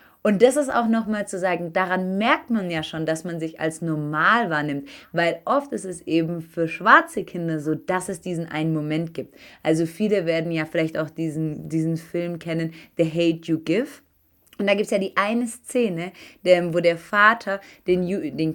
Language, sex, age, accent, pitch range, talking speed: German, female, 20-39, German, 160-200 Hz, 195 wpm